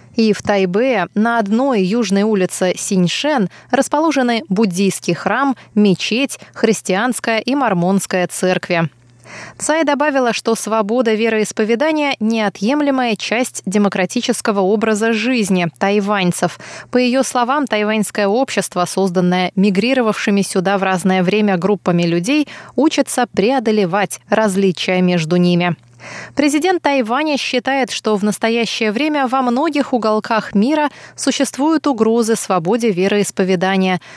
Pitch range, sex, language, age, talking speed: 190-250 Hz, female, Russian, 20-39, 105 wpm